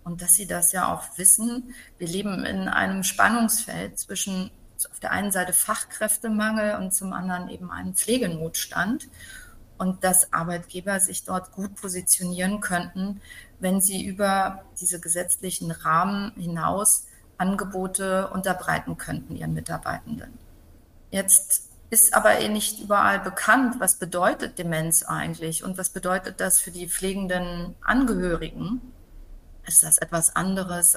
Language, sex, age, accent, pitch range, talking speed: German, female, 30-49, German, 175-205 Hz, 130 wpm